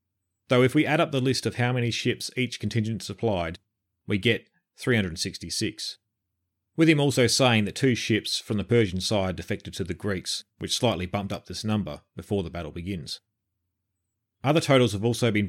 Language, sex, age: English, male, 30-49